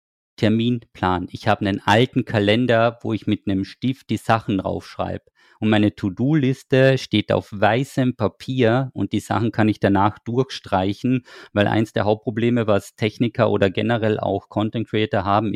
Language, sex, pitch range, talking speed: German, male, 100-120 Hz, 155 wpm